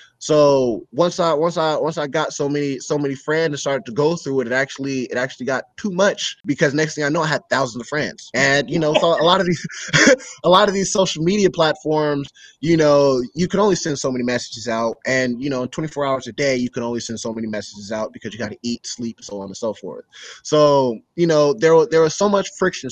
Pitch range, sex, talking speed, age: 120-155 Hz, male, 255 wpm, 20-39